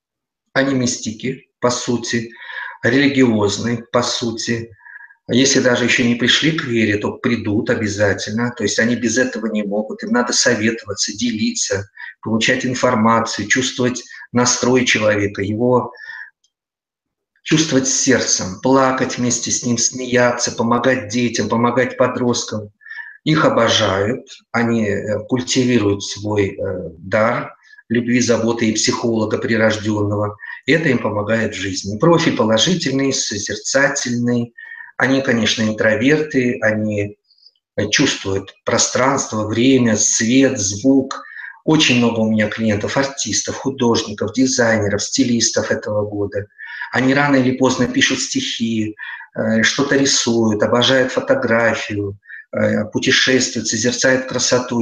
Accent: native